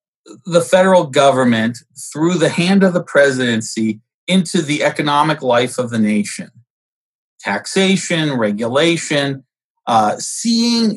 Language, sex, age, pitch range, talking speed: English, male, 40-59, 120-175 Hz, 110 wpm